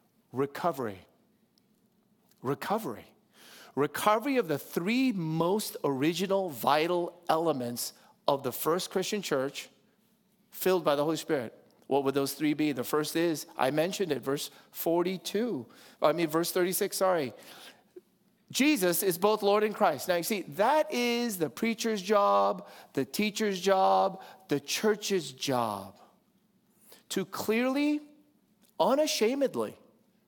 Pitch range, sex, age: 150-215 Hz, male, 40-59